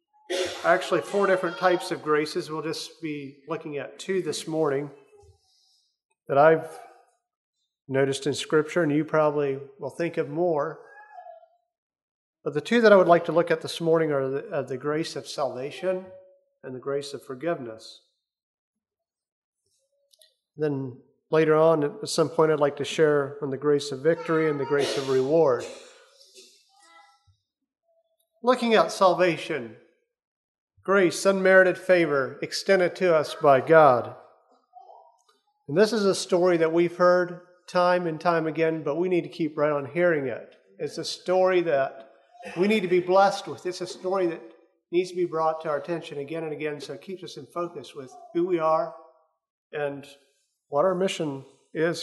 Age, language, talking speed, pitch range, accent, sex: 40-59, English, 165 wpm, 150-220 Hz, American, male